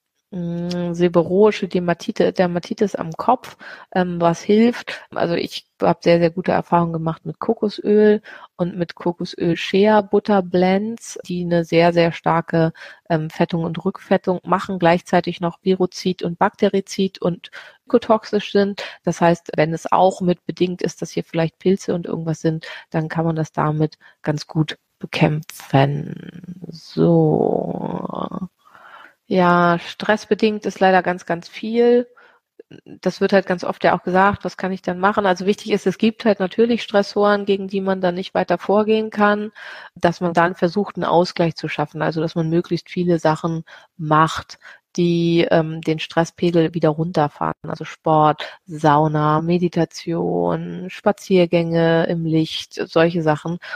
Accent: German